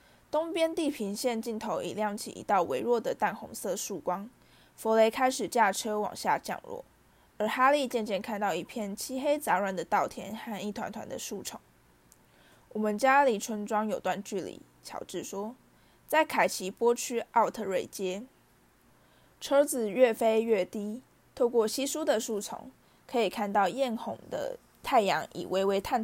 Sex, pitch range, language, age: female, 205-245 Hz, Chinese, 20-39